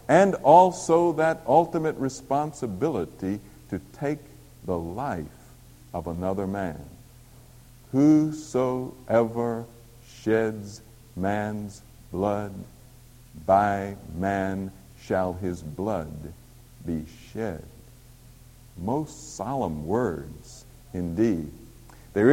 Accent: American